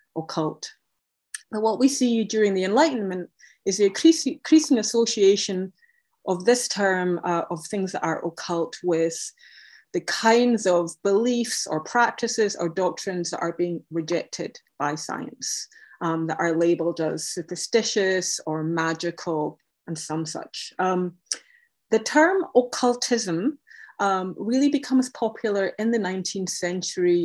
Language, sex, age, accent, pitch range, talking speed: English, female, 30-49, British, 170-230 Hz, 130 wpm